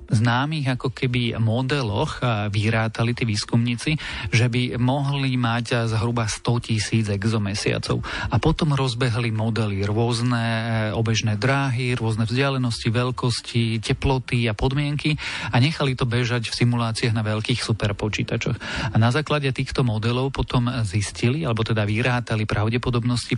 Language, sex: Slovak, male